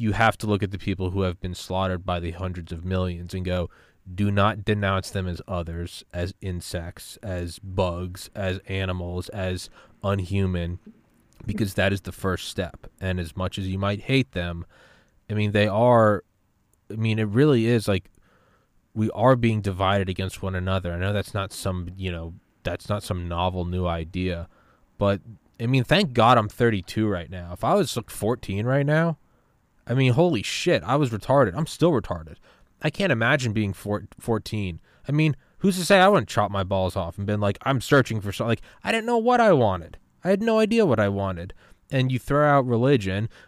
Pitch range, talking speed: 95-120 Hz, 195 wpm